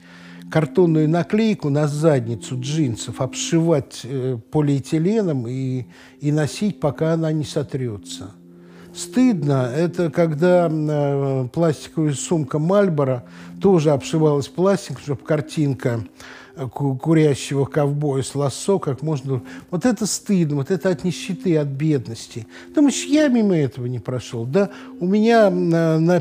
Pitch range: 130-175 Hz